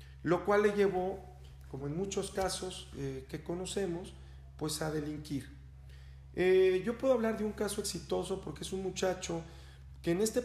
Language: Spanish